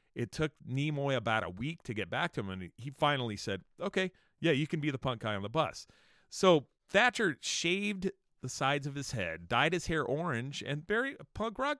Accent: American